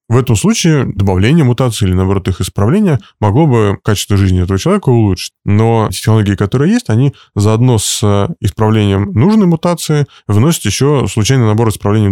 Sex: male